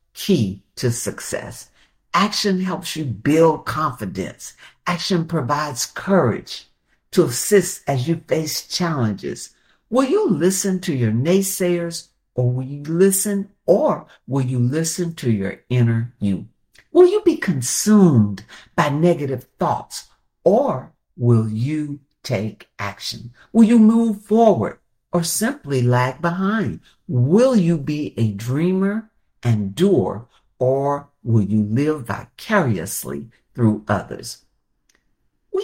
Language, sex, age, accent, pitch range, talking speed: English, male, 60-79, American, 120-185 Hz, 115 wpm